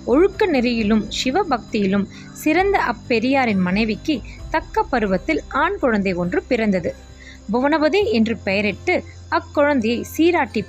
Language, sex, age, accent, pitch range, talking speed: English, female, 20-39, Indian, 205-305 Hz, 95 wpm